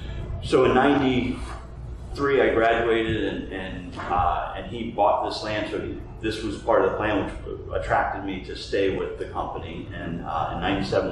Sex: male